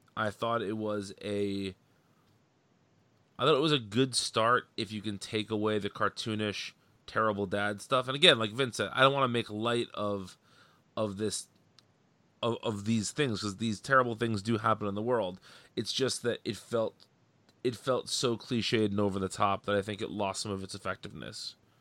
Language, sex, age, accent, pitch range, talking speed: English, male, 30-49, American, 100-120 Hz, 195 wpm